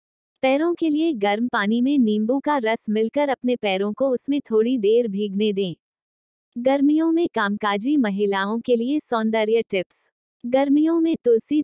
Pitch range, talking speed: 205-260 Hz, 150 wpm